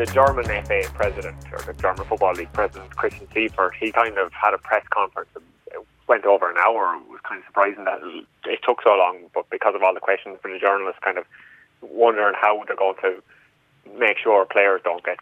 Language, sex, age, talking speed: English, male, 20-39, 220 wpm